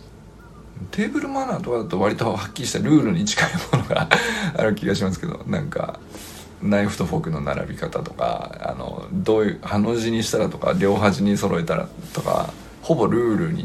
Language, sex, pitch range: Japanese, male, 85-135 Hz